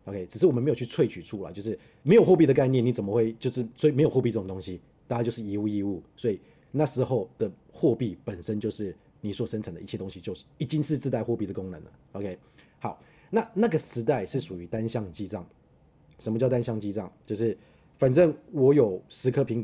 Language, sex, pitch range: Chinese, male, 100-135 Hz